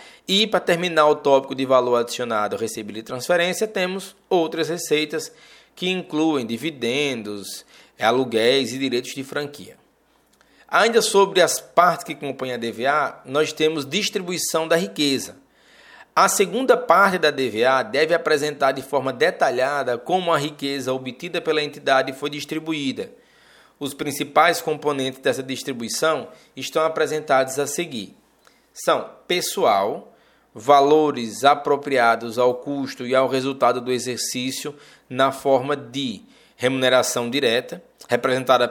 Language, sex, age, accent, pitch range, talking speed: Portuguese, male, 20-39, Brazilian, 125-160 Hz, 120 wpm